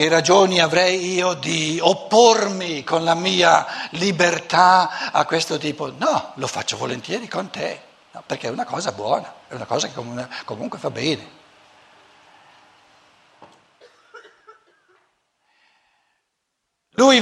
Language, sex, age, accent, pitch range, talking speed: Italian, male, 60-79, native, 180-235 Hz, 110 wpm